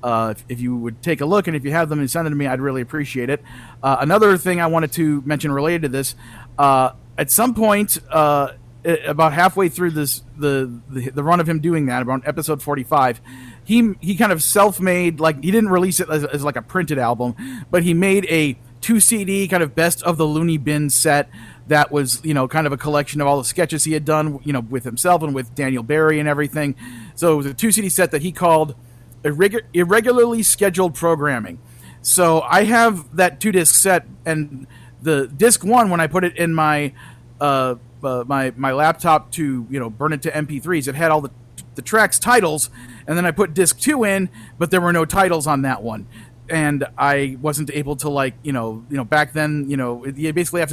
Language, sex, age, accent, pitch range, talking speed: English, male, 40-59, American, 130-170 Hz, 225 wpm